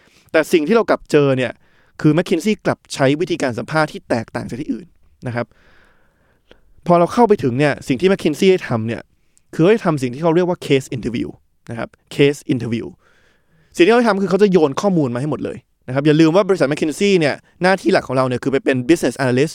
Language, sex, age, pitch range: Thai, male, 20-39, 130-170 Hz